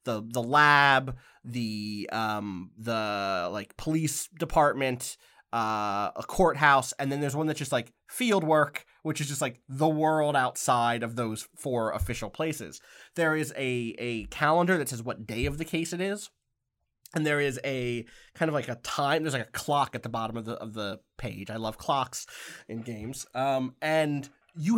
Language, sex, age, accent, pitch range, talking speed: English, male, 20-39, American, 115-155 Hz, 185 wpm